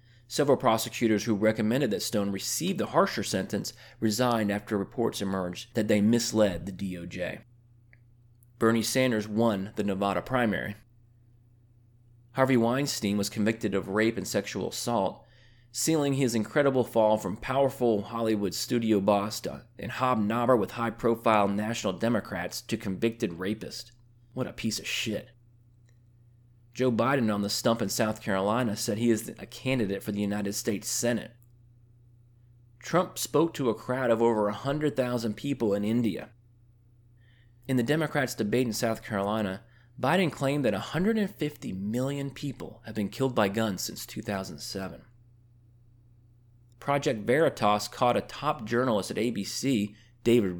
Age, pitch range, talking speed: 30-49, 105-125 Hz, 135 wpm